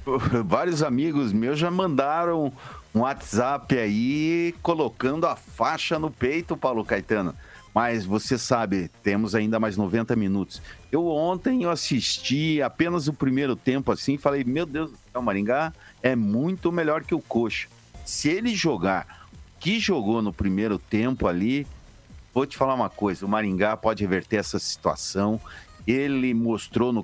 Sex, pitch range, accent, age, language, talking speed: male, 105-155 Hz, Brazilian, 50-69, Portuguese, 145 wpm